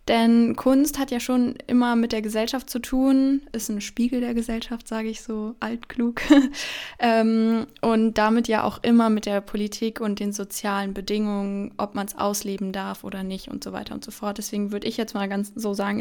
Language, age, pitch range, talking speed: German, 10-29, 210-245 Hz, 200 wpm